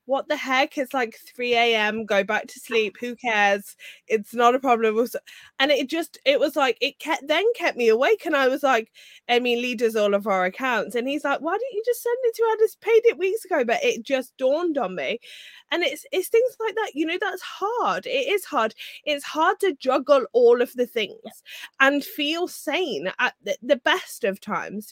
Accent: British